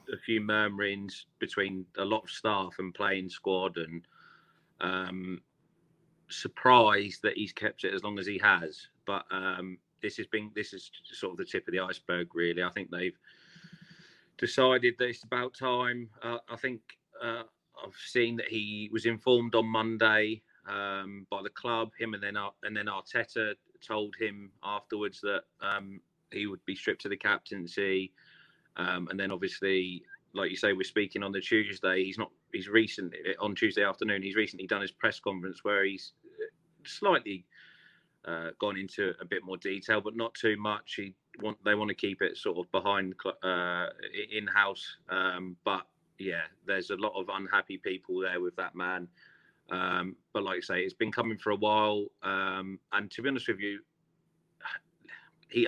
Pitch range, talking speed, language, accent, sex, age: 95-115 Hz, 175 wpm, English, British, male, 30-49